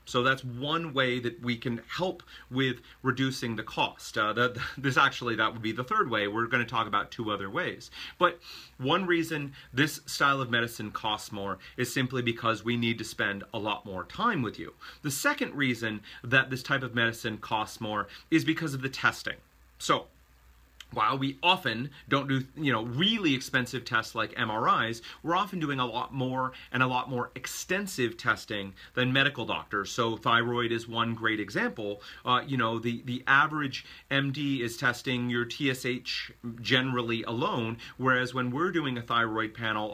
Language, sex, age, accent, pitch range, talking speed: English, male, 30-49, American, 115-130 Hz, 180 wpm